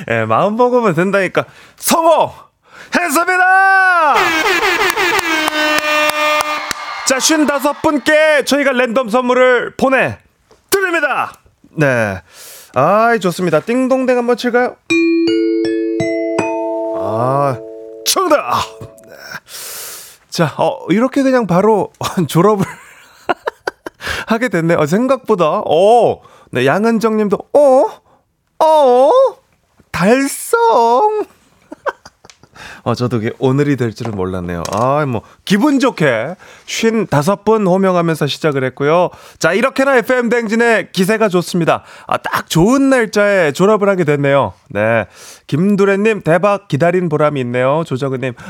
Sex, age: male, 30-49